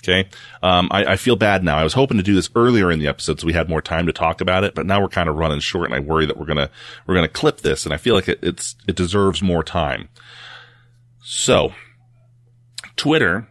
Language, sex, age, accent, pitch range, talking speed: English, male, 30-49, American, 95-125 Hz, 245 wpm